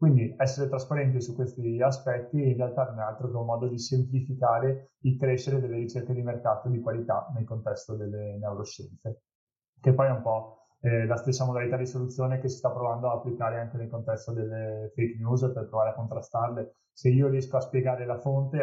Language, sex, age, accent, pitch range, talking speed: Italian, male, 30-49, native, 115-130 Hz, 200 wpm